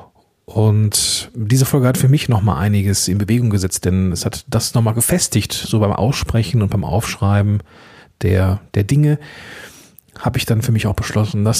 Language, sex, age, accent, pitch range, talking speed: German, male, 40-59, German, 100-130 Hz, 175 wpm